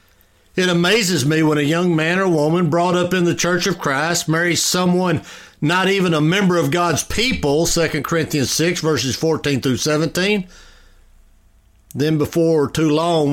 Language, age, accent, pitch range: English, 60-79, American, 110-170 Hz